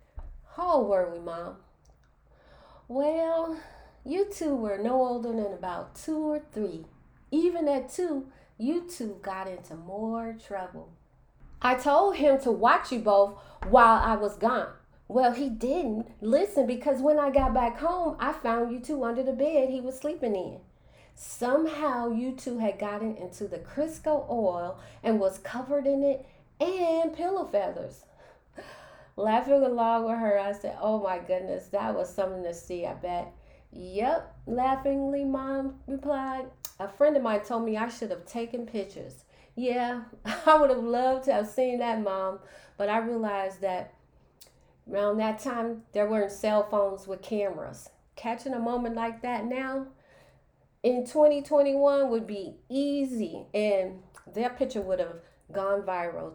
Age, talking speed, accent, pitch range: 30-49, 155 wpm, American, 200-275 Hz